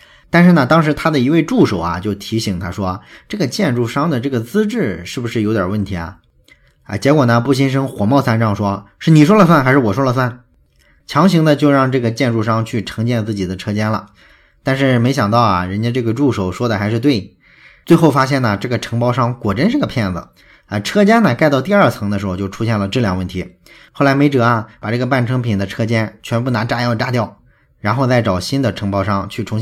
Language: Chinese